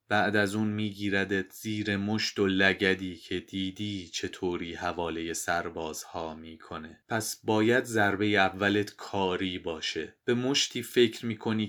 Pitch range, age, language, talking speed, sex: 95-115 Hz, 30-49, Persian, 130 wpm, male